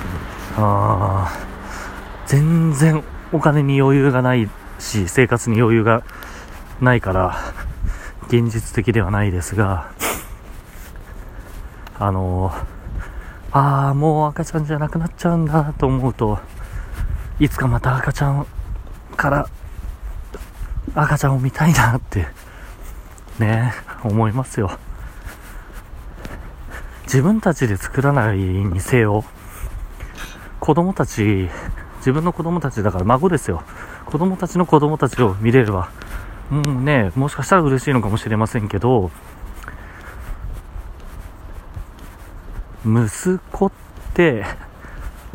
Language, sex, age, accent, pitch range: Japanese, male, 40-59, native, 90-130 Hz